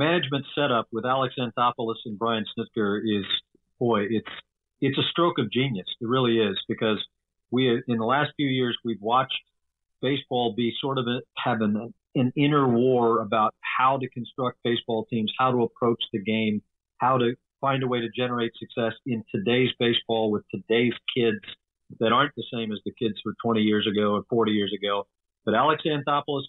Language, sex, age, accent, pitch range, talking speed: English, male, 50-69, American, 115-130 Hz, 185 wpm